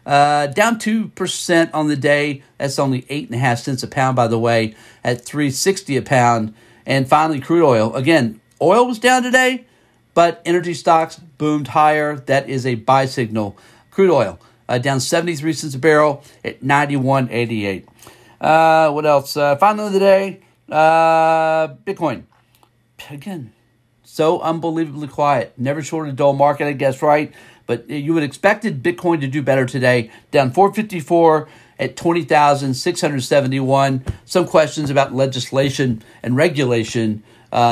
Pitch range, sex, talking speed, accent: 125-165 Hz, male, 145 wpm, American